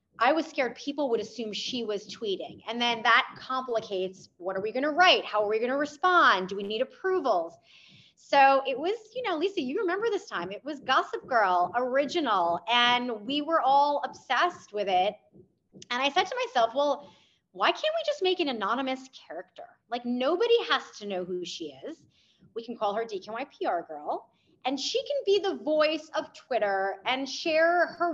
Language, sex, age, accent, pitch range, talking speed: English, female, 30-49, American, 210-315 Hz, 190 wpm